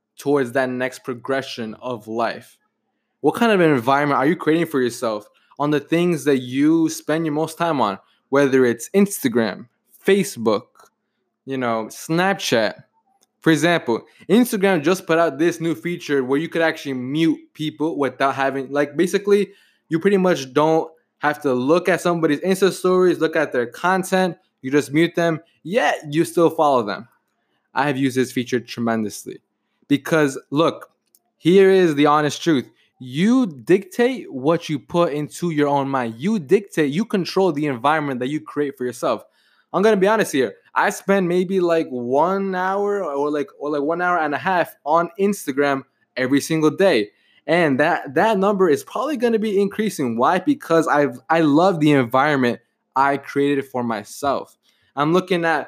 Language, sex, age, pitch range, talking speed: English, male, 20-39, 140-185 Hz, 170 wpm